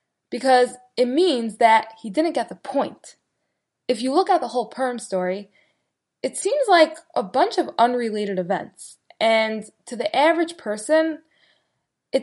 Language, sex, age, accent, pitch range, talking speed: English, female, 10-29, American, 215-305 Hz, 150 wpm